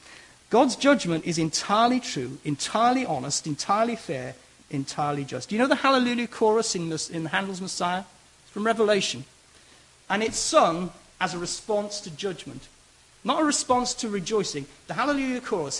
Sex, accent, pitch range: male, British, 145-230 Hz